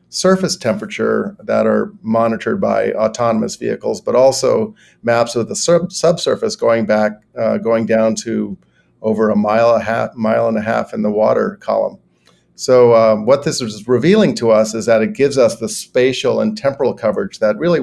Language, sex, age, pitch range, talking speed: English, male, 50-69, 110-125 Hz, 180 wpm